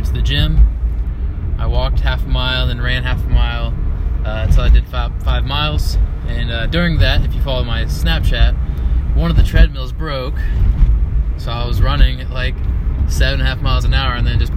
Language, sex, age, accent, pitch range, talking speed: English, male, 20-39, American, 70-95 Hz, 205 wpm